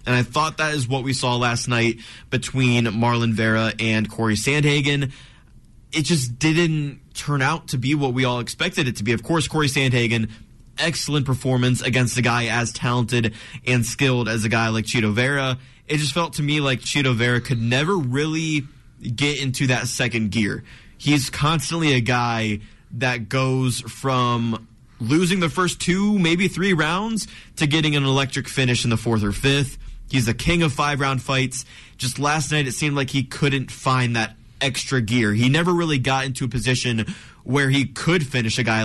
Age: 20-39